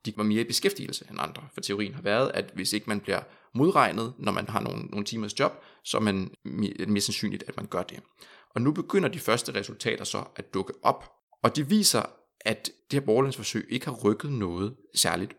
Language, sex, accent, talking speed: Danish, male, native, 220 wpm